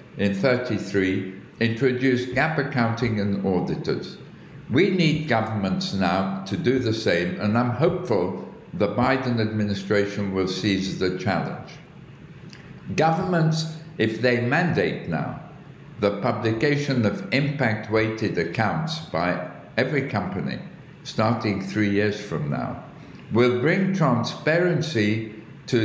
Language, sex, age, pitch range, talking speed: English, male, 60-79, 100-155 Hz, 110 wpm